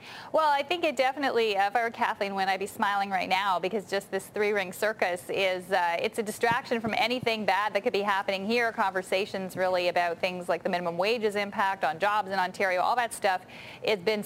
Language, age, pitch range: English, 20-39, 190-235 Hz